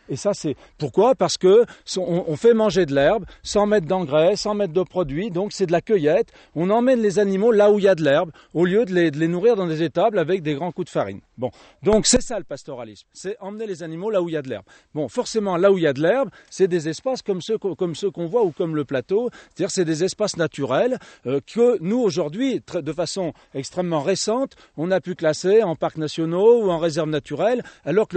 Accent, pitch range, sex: French, 155-205 Hz, male